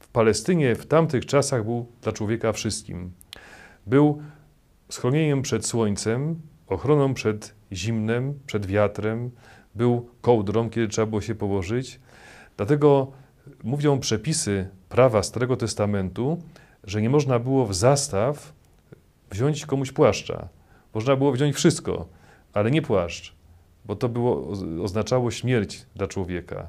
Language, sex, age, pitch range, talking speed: Polish, male, 40-59, 95-130 Hz, 115 wpm